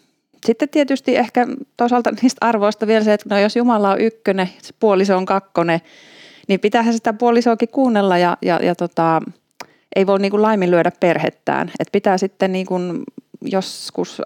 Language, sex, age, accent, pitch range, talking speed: Finnish, female, 30-49, native, 160-210 Hz, 150 wpm